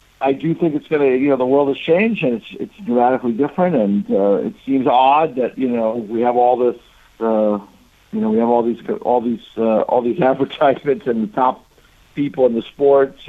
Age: 60-79